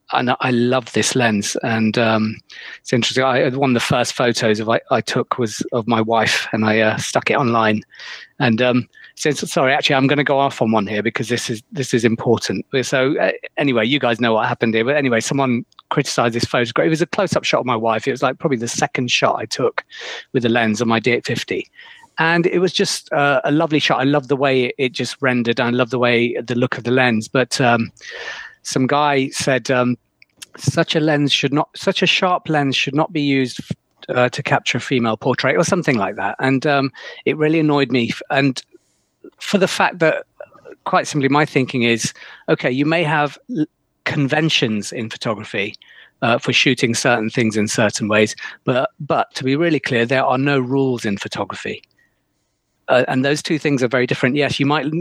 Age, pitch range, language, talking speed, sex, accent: 40-59, 120-145 Hz, English, 215 wpm, male, British